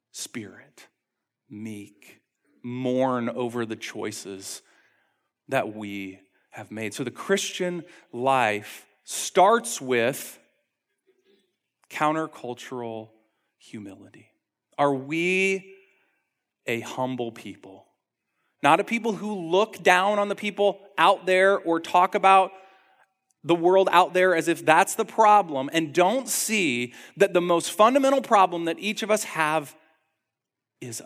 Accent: American